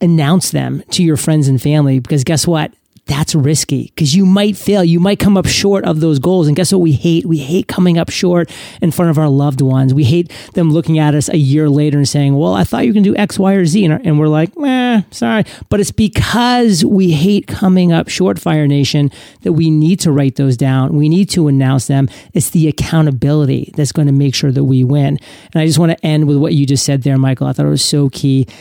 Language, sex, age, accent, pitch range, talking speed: English, male, 40-59, American, 145-180 Hz, 245 wpm